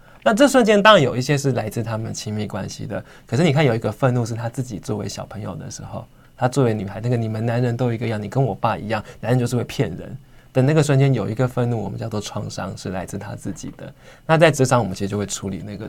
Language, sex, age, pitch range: Chinese, male, 20-39, 105-130 Hz